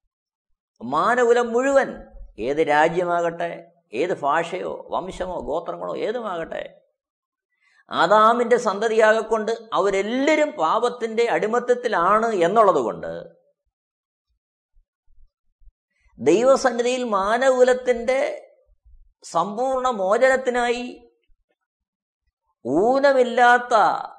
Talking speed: 50 wpm